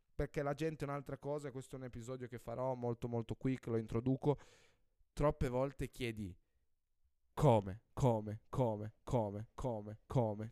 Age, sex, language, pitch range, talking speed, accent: 10-29, male, Italian, 110-150 Hz, 150 wpm, native